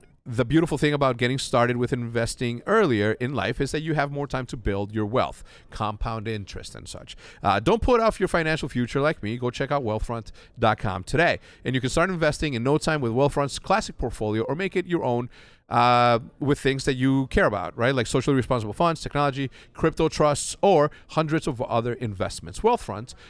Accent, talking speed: American, 200 wpm